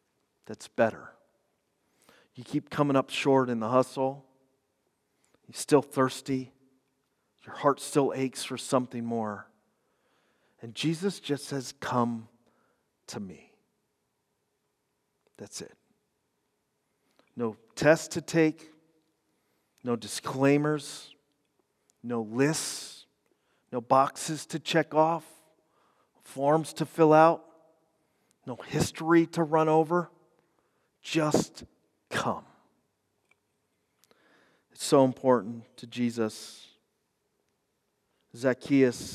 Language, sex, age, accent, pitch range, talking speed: English, male, 40-59, American, 125-155 Hz, 90 wpm